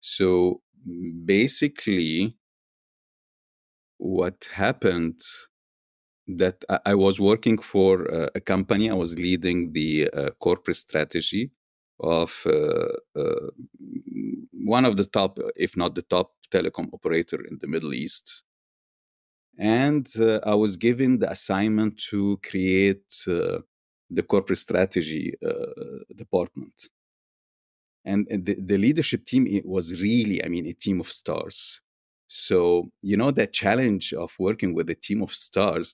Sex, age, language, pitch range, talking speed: male, 50-69, Danish, 90-130 Hz, 130 wpm